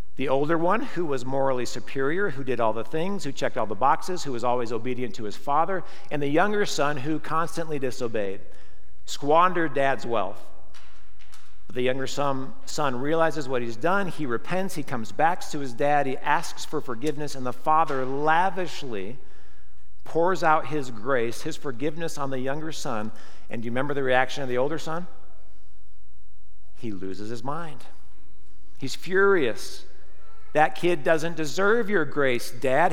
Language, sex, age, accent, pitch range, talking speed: English, male, 50-69, American, 115-160 Hz, 165 wpm